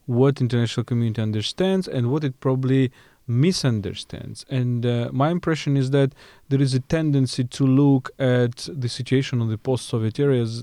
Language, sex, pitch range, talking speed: English, male, 115-145 Hz, 160 wpm